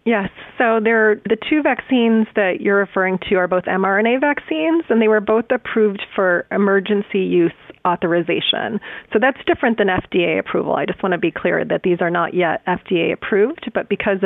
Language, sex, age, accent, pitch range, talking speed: English, female, 30-49, American, 185-225 Hz, 185 wpm